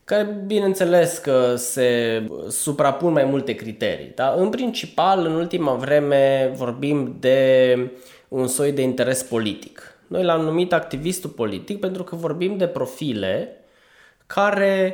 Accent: native